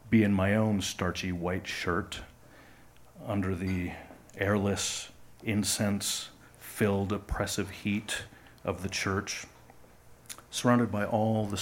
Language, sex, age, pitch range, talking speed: English, male, 50-69, 95-110 Hz, 105 wpm